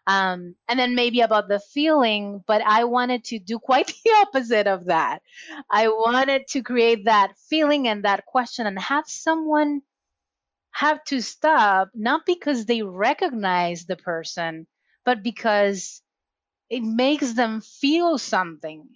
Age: 30-49